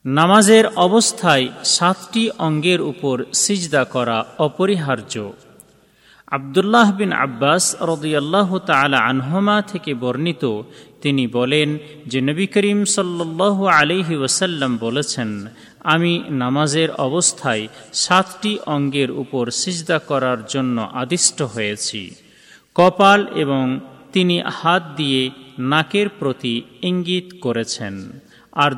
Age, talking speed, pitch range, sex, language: 40-59, 95 wpm, 125-175 Hz, male, Bengali